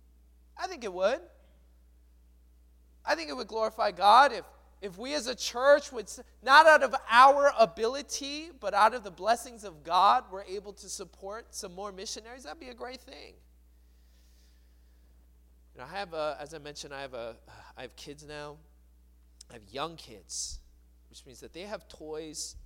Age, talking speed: 20-39, 180 wpm